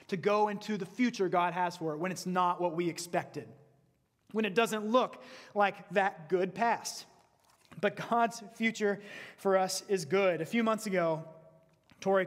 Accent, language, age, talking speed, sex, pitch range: American, English, 30-49, 170 wpm, male, 155-195 Hz